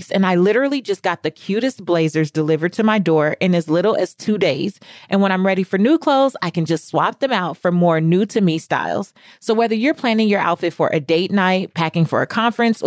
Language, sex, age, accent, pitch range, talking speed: English, female, 30-49, American, 170-215 Hz, 240 wpm